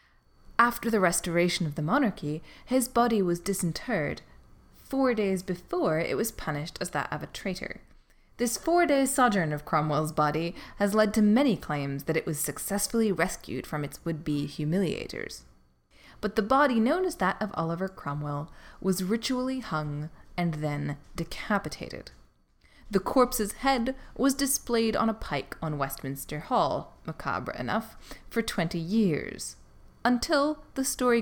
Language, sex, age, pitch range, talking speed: English, female, 20-39, 155-235 Hz, 145 wpm